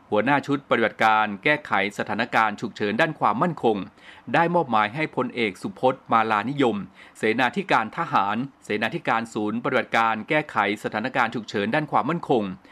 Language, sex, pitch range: Thai, male, 110-150 Hz